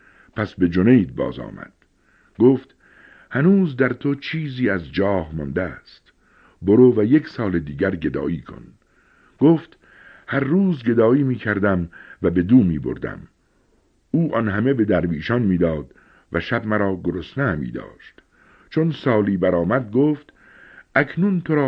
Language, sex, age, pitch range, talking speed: Persian, male, 60-79, 90-135 Hz, 135 wpm